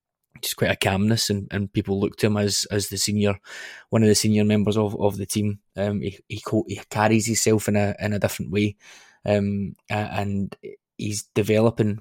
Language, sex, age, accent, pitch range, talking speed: English, male, 20-39, British, 105-110 Hz, 195 wpm